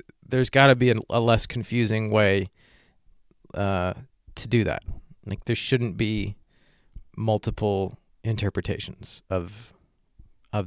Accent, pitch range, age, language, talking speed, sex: American, 105-140 Hz, 30-49, English, 120 wpm, male